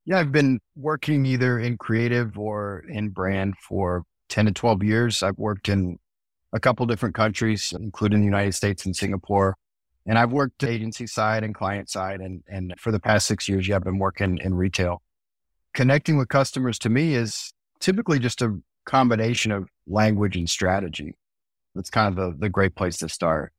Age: 30-49